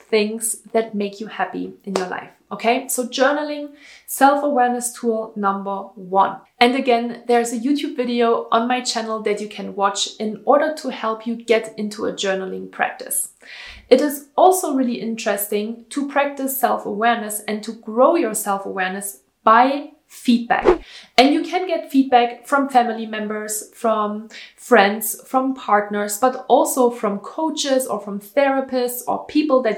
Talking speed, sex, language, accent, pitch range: 150 wpm, female, English, German, 215-265 Hz